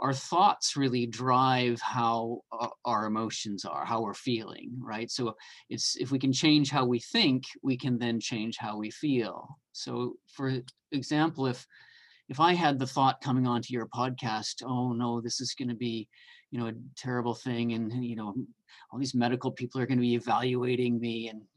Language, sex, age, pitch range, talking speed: English, male, 40-59, 115-135 Hz, 185 wpm